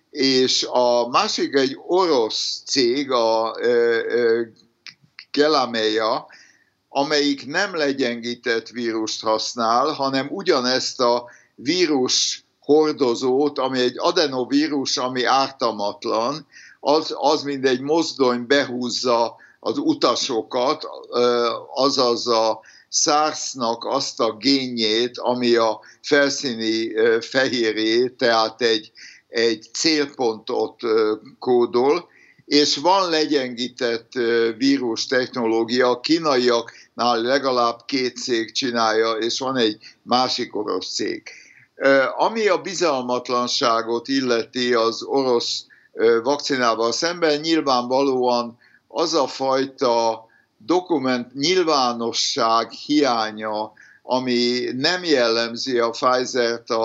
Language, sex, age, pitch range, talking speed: Hungarian, male, 60-79, 115-140 Hz, 90 wpm